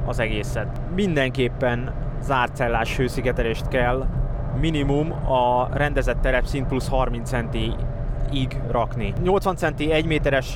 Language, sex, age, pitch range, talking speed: Hungarian, male, 20-39, 125-140 Hz, 110 wpm